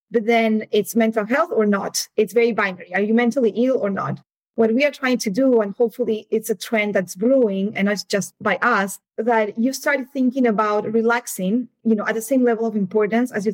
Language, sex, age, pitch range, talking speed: English, female, 20-39, 195-230 Hz, 220 wpm